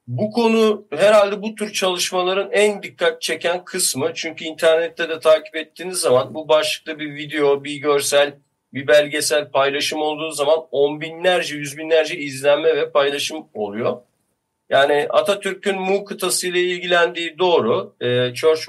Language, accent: Turkish, native